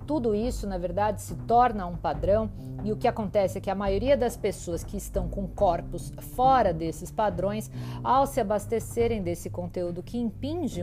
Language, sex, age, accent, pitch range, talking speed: Portuguese, female, 50-69, Brazilian, 175-245 Hz, 175 wpm